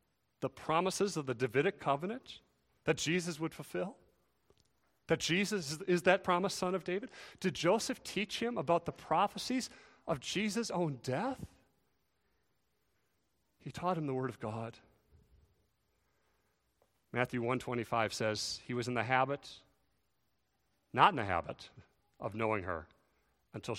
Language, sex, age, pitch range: English, male, 40-59, 125-175 Hz